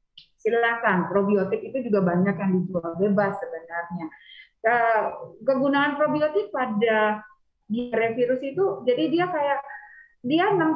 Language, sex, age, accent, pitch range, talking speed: English, female, 30-49, Indonesian, 205-290 Hz, 105 wpm